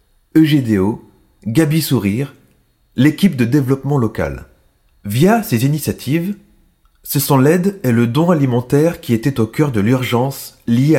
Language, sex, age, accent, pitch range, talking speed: French, male, 30-49, French, 115-155 Hz, 130 wpm